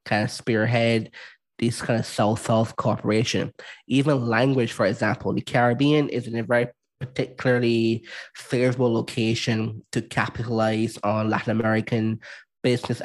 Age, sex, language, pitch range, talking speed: 20-39, male, English, 110-125 Hz, 125 wpm